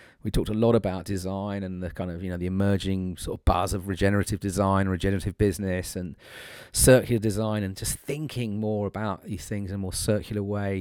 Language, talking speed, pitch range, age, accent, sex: English, 205 wpm, 95-110 Hz, 30-49, British, male